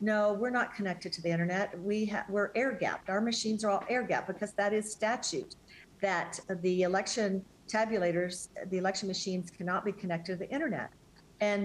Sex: female